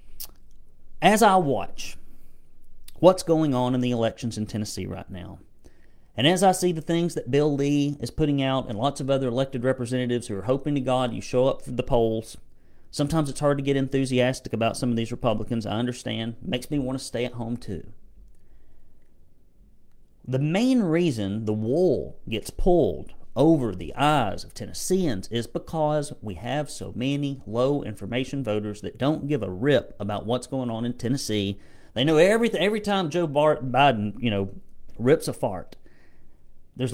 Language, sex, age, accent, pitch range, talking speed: English, male, 40-59, American, 110-140 Hz, 175 wpm